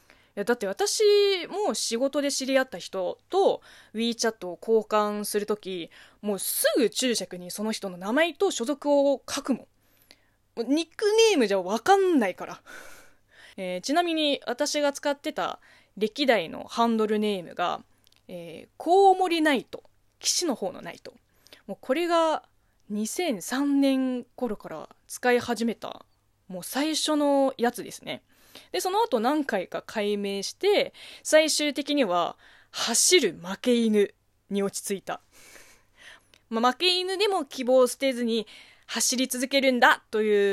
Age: 20-39